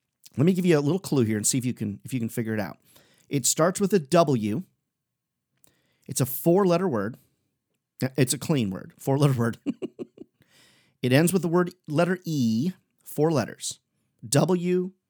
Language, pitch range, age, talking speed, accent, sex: English, 115-150 Hz, 40-59, 175 wpm, American, male